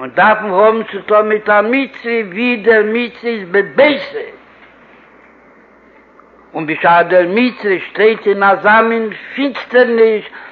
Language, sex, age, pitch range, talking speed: Hebrew, male, 60-79, 200-235 Hz, 150 wpm